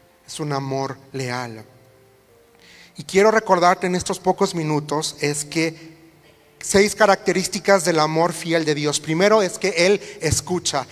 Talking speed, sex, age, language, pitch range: 135 wpm, male, 40-59, Spanish, 130-165 Hz